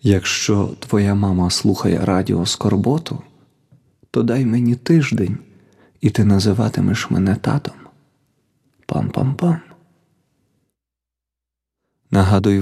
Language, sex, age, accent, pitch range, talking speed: Ukrainian, male, 30-49, native, 100-125 Hz, 80 wpm